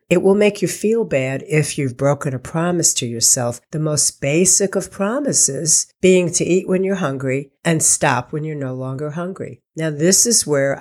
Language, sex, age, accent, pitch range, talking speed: English, female, 50-69, American, 135-175 Hz, 195 wpm